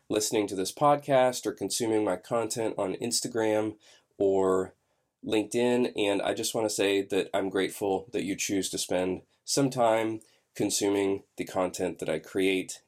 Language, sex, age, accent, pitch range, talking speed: English, male, 20-39, American, 105-130 Hz, 160 wpm